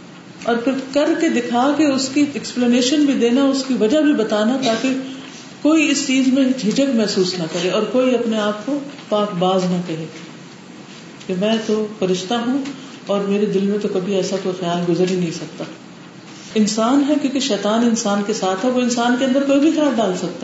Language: Urdu